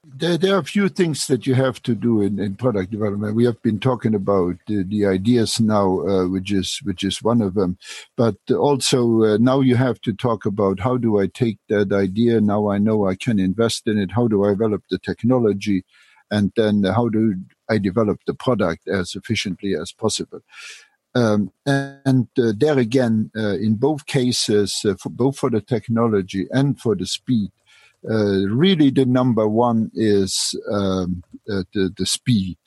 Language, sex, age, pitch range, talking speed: English, male, 60-79, 100-125 Hz, 165 wpm